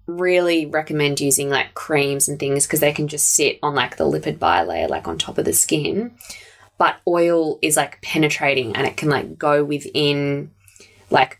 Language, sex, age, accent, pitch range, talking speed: English, female, 20-39, Australian, 140-155 Hz, 185 wpm